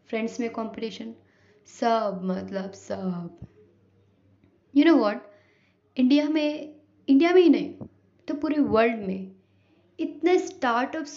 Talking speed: 115 wpm